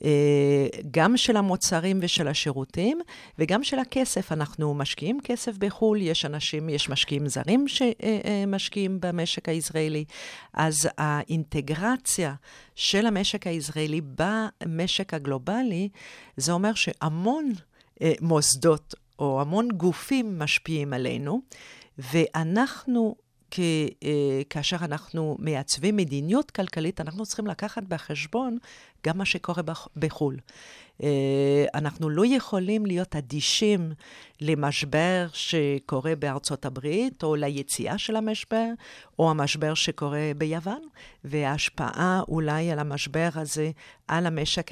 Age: 50-69